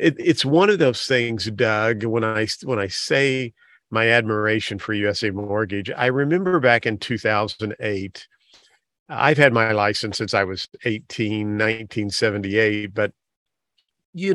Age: 50-69